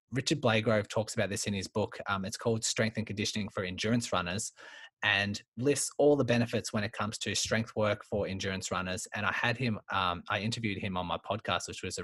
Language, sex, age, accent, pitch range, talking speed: English, male, 20-39, Australian, 105-120 Hz, 225 wpm